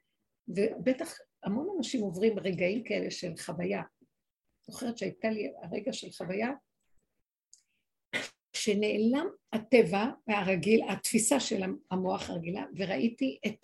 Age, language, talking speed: 50-69, Hebrew, 100 wpm